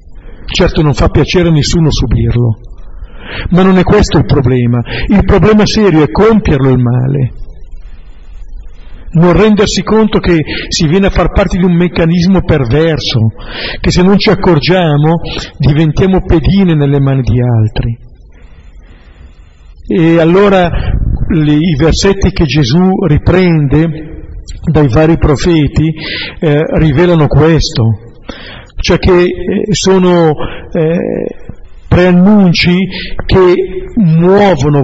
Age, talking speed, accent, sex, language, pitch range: 50-69, 110 wpm, native, male, Italian, 120-175 Hz